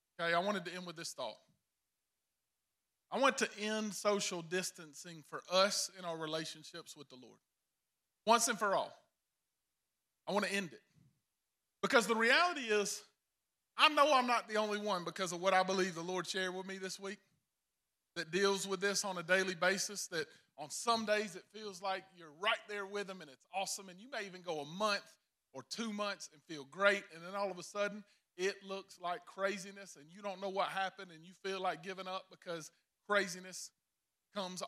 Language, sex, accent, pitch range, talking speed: English, male, American, 175-205 Hz, 200 wpm